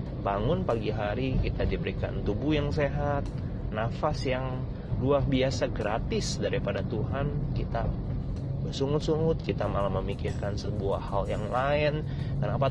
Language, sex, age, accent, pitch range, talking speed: Indonesian, male, 30-49, native, 100-140 Hz, 120 wpm